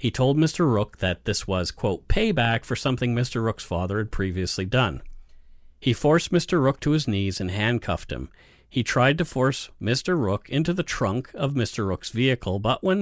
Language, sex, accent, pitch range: English, male, American, 95-135 Hz